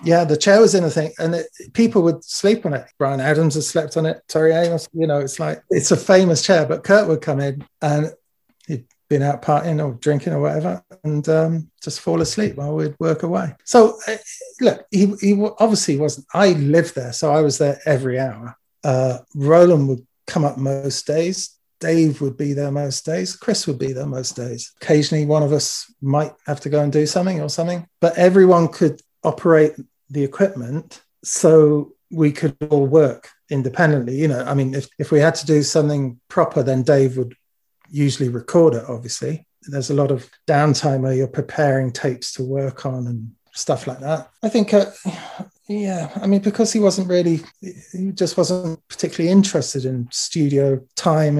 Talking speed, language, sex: 195 wpm, English, male